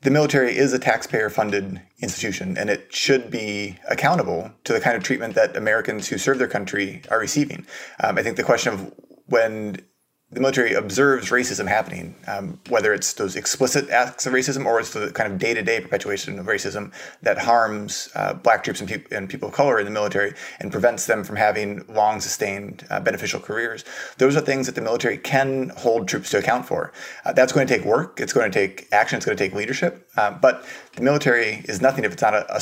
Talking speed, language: 210 wpm, English